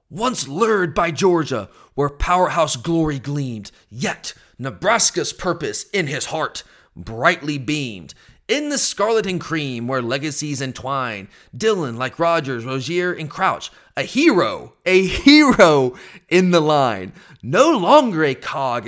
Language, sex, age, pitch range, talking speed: English, male, 30-49, 135-215 Hz, 130 wpm